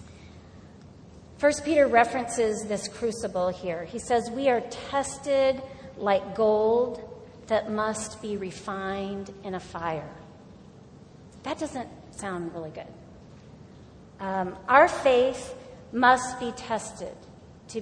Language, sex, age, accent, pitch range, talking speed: English, female, 40-59, American, 195-240 Hz, 110 wpm